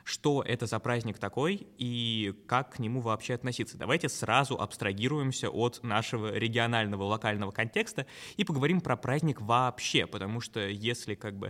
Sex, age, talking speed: male, 20-39, 140 wpm